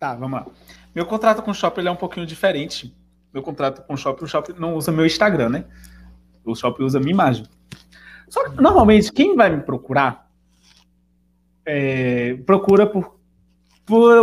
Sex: male